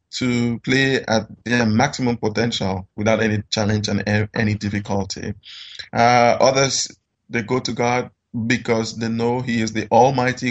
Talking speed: 145 wpm